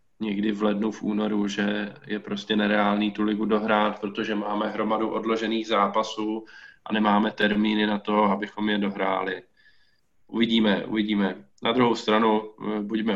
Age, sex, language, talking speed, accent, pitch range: 20-39, male, Czech, 140 wpm, native, 105-115 Hz